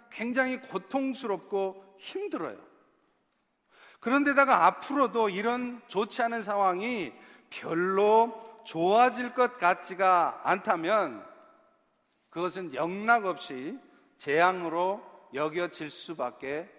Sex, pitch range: male, 195-255 Hz